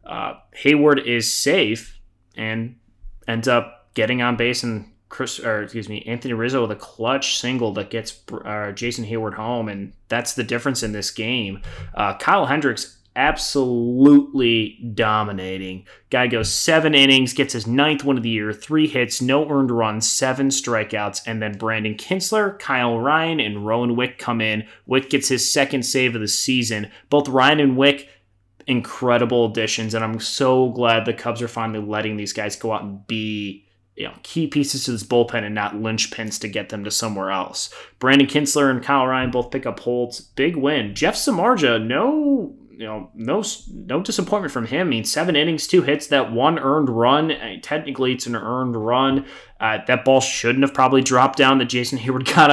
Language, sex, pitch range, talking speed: English, male, 110-135 Hz, 185 wpm